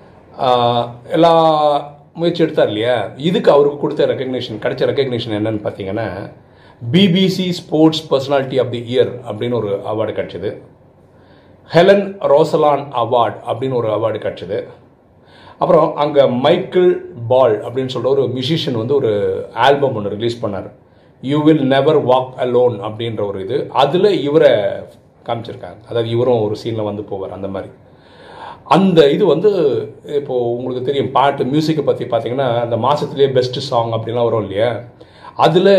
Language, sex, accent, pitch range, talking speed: Tamil, male, native, 120-165 Hz, 130 wpm